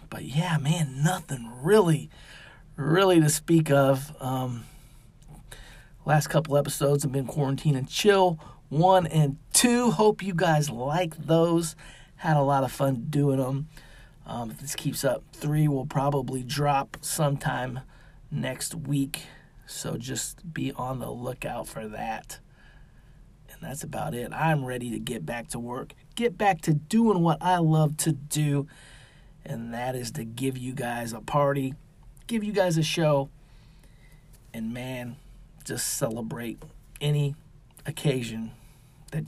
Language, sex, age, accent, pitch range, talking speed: English, male, 30-49, American, 130-165 Hz, 145 wpm